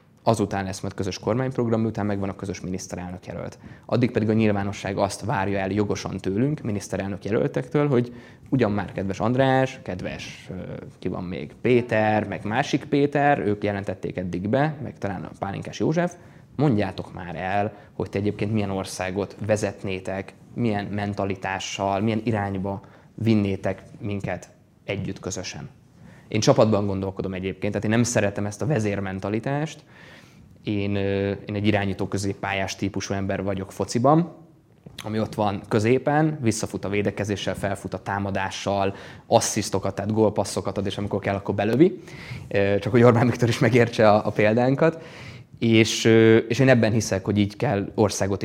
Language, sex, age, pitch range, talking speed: Hungarian, male, 20-39, 100-115 Hz, 145 wpm